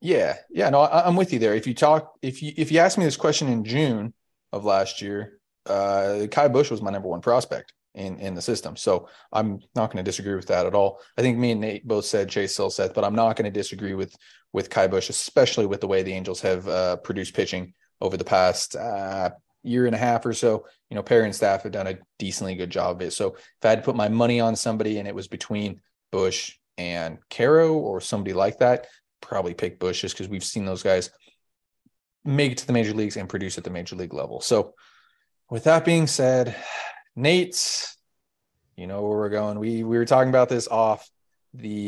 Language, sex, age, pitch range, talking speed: English, male, 30-49, 100-125 Hz, 230 wpm